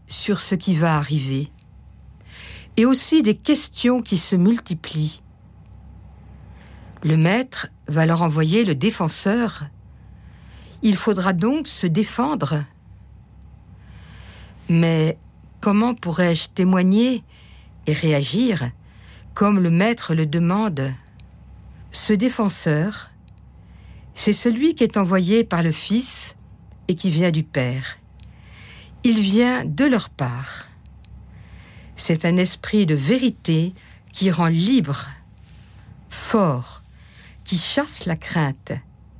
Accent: French